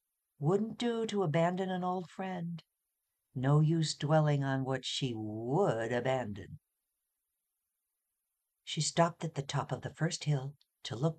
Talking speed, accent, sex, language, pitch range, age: 140 wpm, American, female, English, 135-200 Hz, 50-69